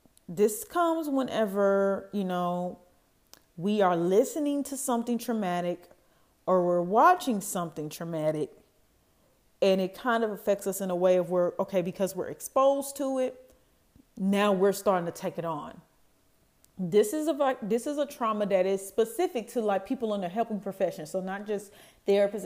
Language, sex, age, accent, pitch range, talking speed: English, female, 30-49, American, 175-210 Hz, 165 wpm